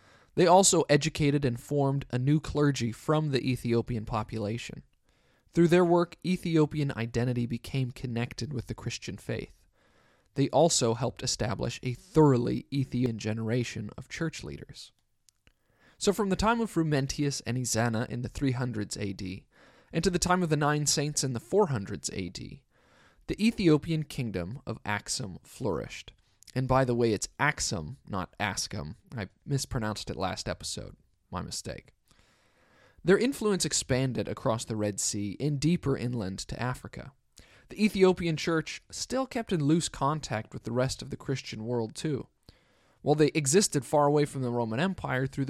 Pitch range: 115-155 Hz